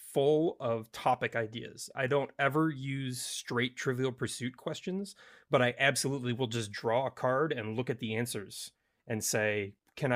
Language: English